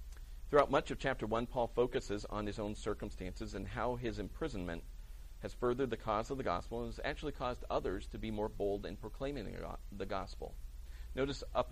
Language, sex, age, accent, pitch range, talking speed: English, male, 40-59, American, 85-120 Hz, 190 wpm